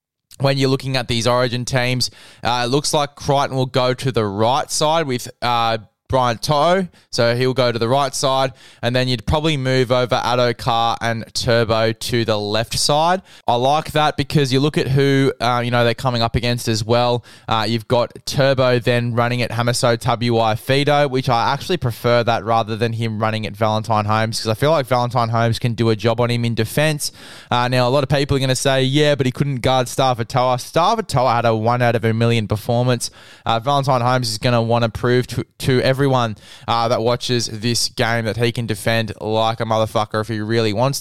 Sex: male